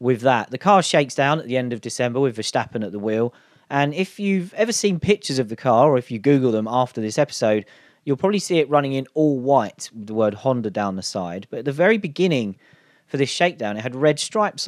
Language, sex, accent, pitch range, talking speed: English, male, British, 115-145 Hz, 245 wpm